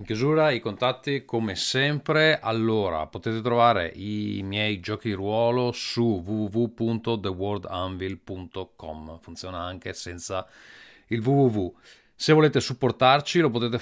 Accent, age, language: native, 30-49, Italian